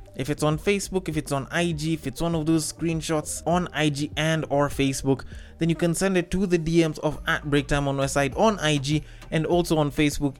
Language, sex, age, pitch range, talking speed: English, male, 20-39, 135-180 Hz, 220 wpm